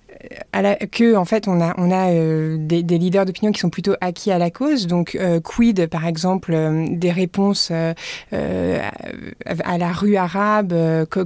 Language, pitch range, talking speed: French, 170-200 Hz, 190 wpm